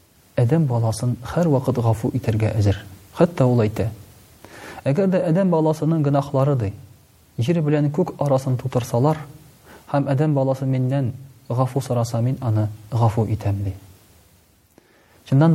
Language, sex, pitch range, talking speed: Russian, male, 110-145 Hz, 115 wpm